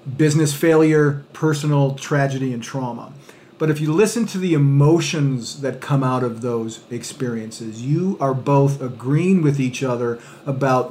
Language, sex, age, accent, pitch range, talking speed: English, male, 40-59, American, 130-160 Hz, 150 wpm